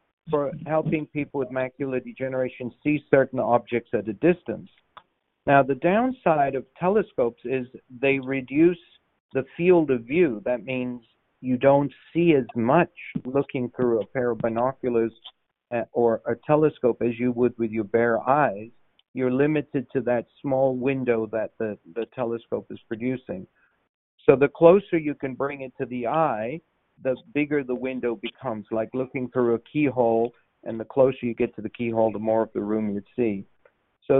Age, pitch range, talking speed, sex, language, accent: 50-69, 120-150 Hz, 170 wpm, male, English, American